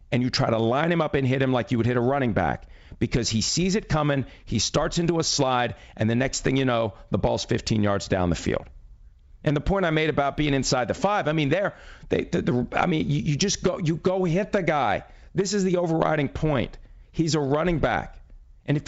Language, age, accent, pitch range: English, 40-59, American, 120-160 Hz